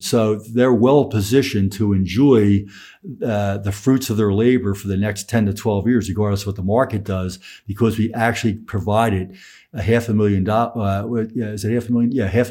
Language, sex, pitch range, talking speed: English, male, 100-120 Hz, 205 wpm